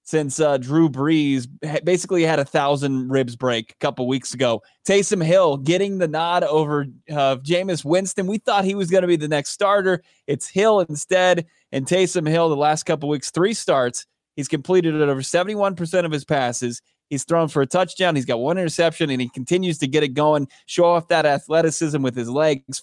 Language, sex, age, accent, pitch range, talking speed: English, male, 20-39, American, 140-175 Hz, 200 wpm